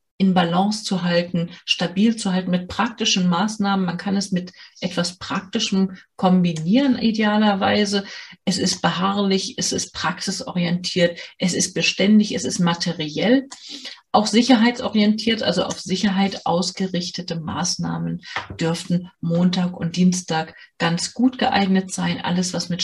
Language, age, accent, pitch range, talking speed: German, 40-59, German, 175-210 Hz, 125 wpm